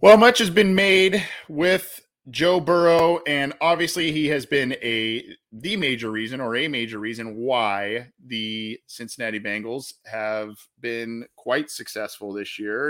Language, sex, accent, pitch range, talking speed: English, male, American, 110-155 Hz, 145 wpm